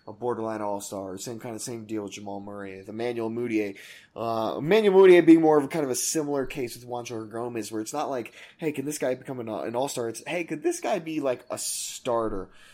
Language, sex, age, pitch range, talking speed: English, male, 20-39, 115-160 Hz, 230 wpm